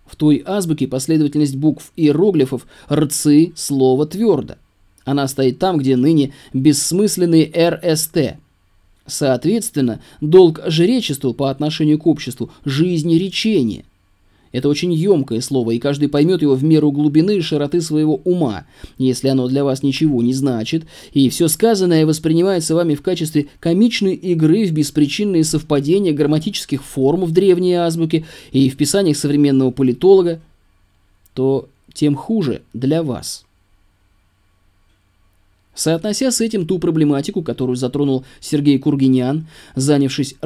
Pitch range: 130-165 Hz